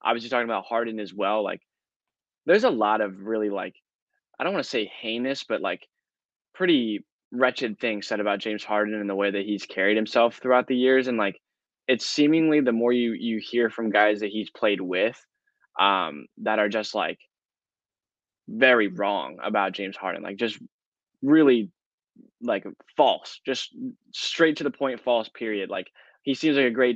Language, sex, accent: English, male, American